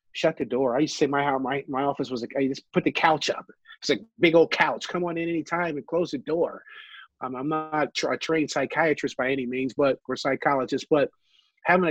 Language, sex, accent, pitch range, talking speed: English, male, American, 125-165 Hz, 230 wpm